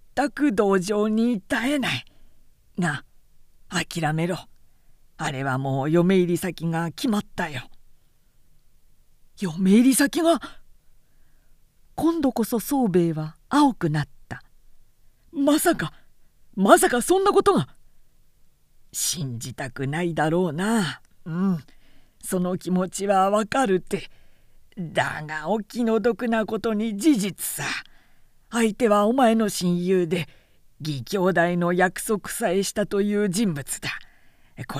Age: 50-69